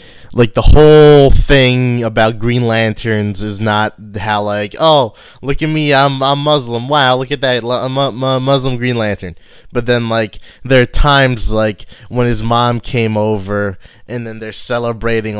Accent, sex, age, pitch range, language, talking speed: American, male, 20-39, 105-125 Hz, English, 175 wpm